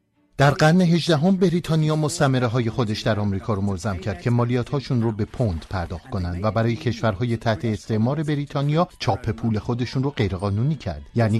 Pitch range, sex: 105-125 Hz, male